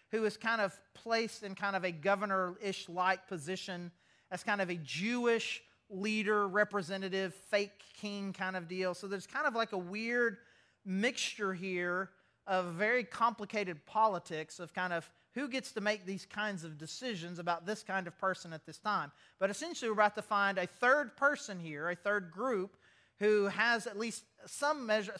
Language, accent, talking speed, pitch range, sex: English, American, 180 wpm, 175-220 Hz, male